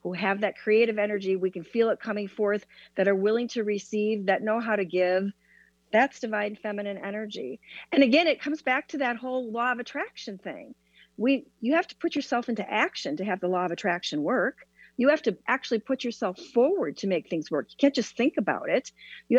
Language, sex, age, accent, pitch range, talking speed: English, female, 50-69, American, 195-260 Hz, 215 wpm